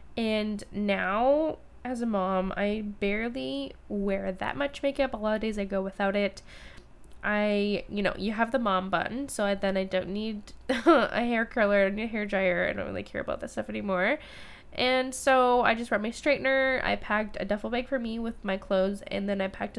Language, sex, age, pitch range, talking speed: English, female, 10-29, 195-235 Hz, 205 wpm